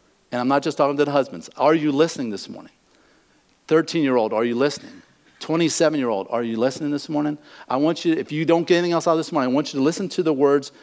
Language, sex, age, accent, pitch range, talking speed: English, male, 50-69, American, 120-165 Hz, 240 wpm